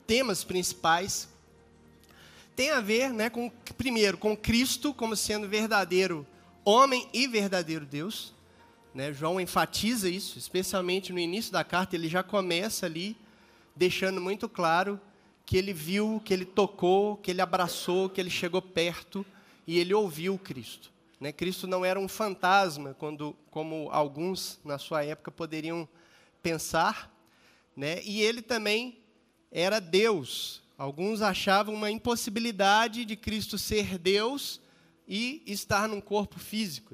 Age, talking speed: 20-39, 135 wpm